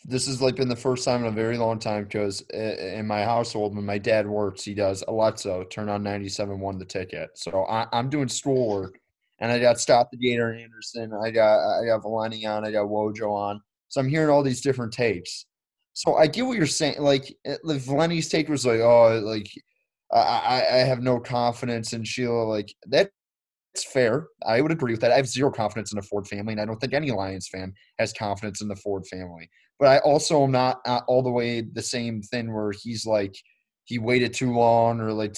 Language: English